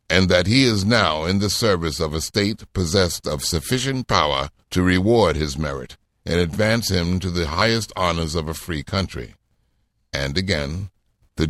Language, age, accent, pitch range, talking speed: English, 60-79, American, 80-105 Hz, 170 wpm